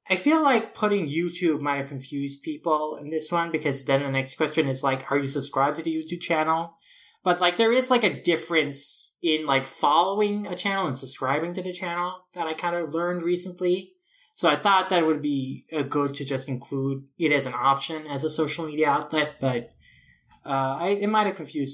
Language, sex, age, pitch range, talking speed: English, male, 20-39, 135-175 Hz, 205 wpm